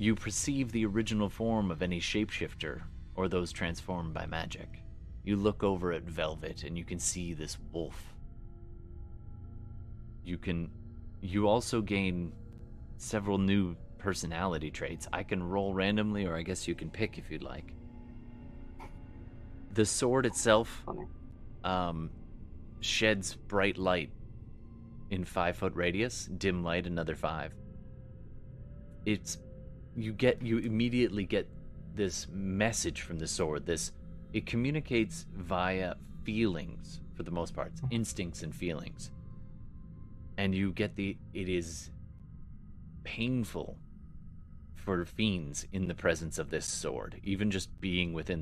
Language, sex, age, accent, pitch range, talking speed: English, male, 30-49, American, 85-105 Hz, 130 wpm